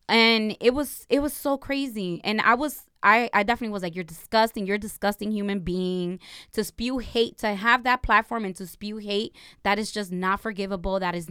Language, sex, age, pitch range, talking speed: English, female, 20-39, 195-235 Hz, 210 wpm